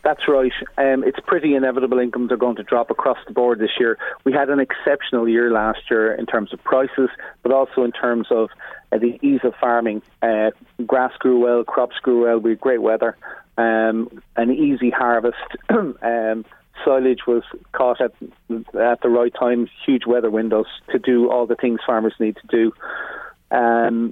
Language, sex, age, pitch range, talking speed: English, male, 30-49, 115-130 Hz, 185 wpm